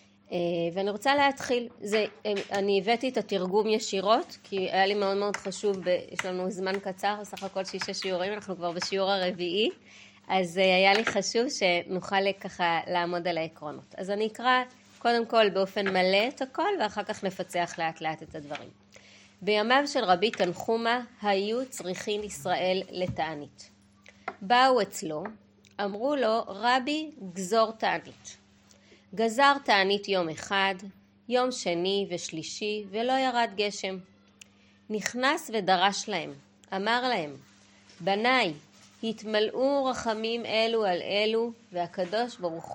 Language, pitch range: Hebrew, 175-220 Hz